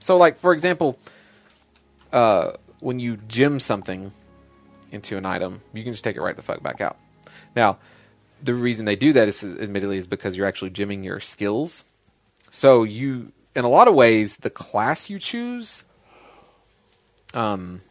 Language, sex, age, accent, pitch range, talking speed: English, male, 30-49, American, 95-125 Hz, 170 wpm